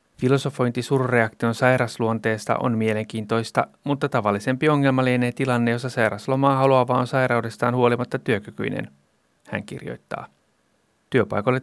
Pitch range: 110-140 Hz